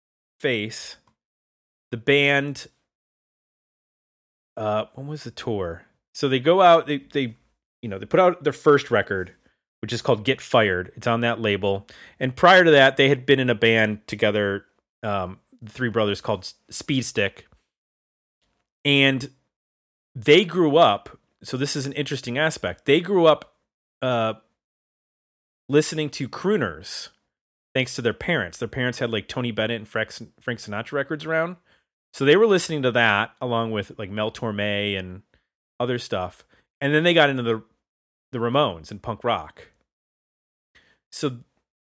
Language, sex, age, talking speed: English, male, 30-49, 155 wpm